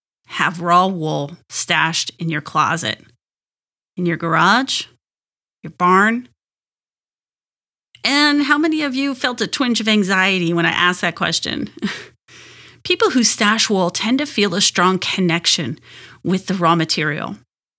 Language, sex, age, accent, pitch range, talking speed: English, female, 30-49, American, 170-240 Hz, 140 wpm